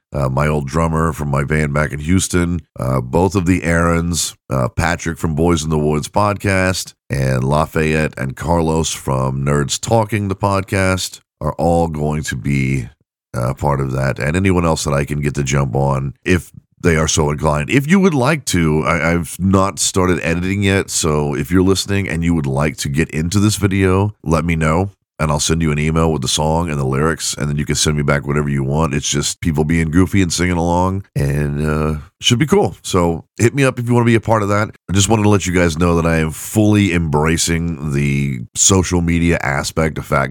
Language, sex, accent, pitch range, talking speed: English, male, American, 75-100 Hz, 225 wpm